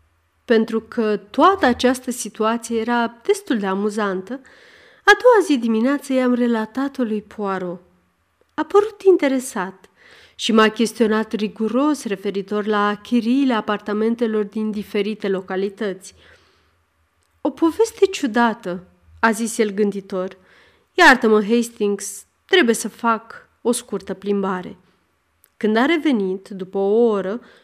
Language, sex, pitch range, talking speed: Romanian, female, 200-260 Hz, 115 wpm